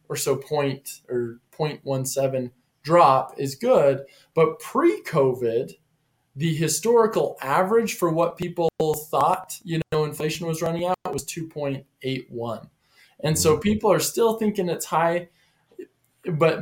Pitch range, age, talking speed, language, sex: 135-165 Hz, 20-39, 125 wpm, English, male